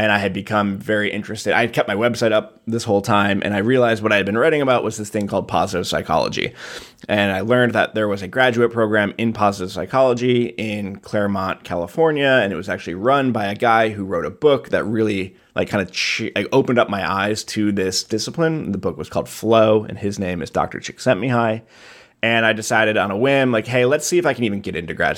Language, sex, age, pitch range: English, male, 20-39, 100-115 Hz